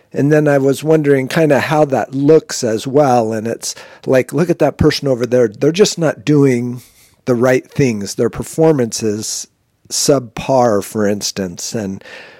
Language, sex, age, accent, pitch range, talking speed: English, male, 50-69, American, 120-145 Hz, 170 wpm